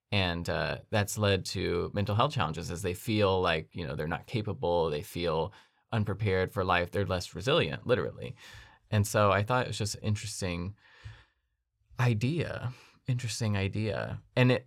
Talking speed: 160 wpm